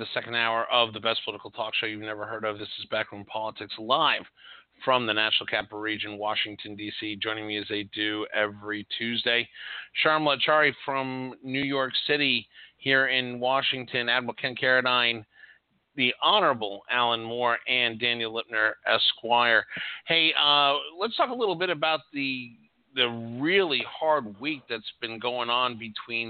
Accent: American